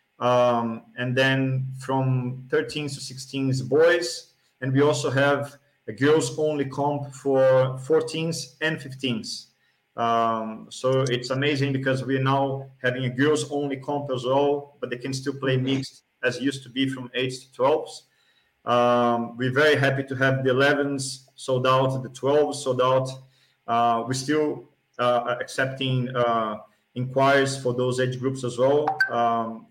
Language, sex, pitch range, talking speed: English, male, 125-140 Hz, 150 wpm